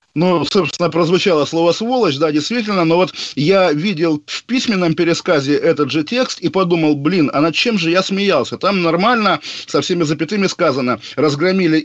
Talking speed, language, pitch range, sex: 165 wpm, Russian, 150-190 Hz, male